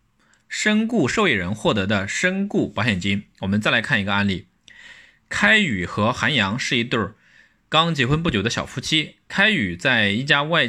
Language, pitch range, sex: Chinese, 105-165 Hz, male